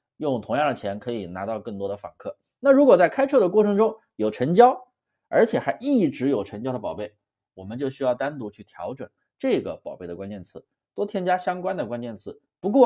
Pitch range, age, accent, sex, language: 105-140 Hz, 20-39, native, male, Chinese